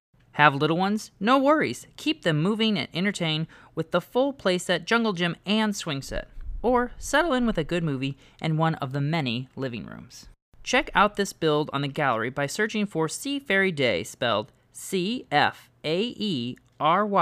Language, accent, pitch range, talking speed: English, American, 130-200 Hz, 180 wpm